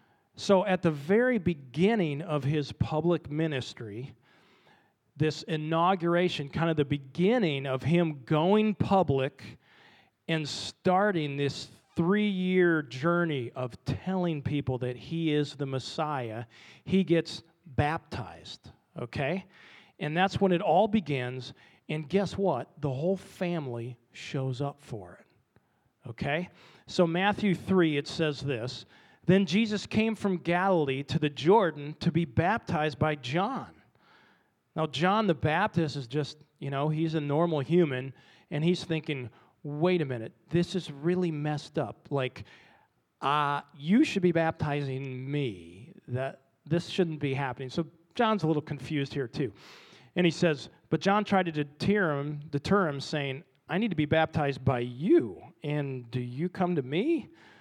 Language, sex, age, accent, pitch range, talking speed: English, male, 40-59, American, 140-180 Hz, 145 wpm